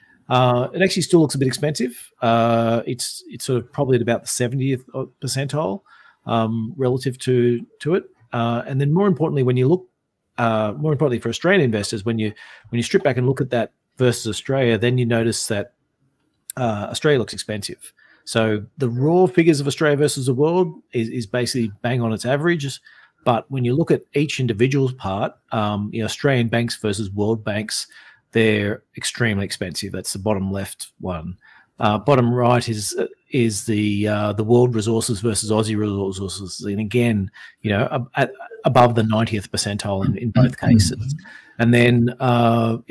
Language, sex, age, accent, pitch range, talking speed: English, male, 40-59, Australian, 110-135 Hz, 180 wpm